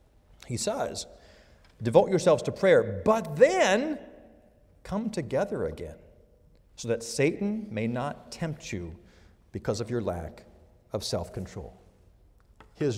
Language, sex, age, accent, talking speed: English, male, 50-69, American, 115 wpm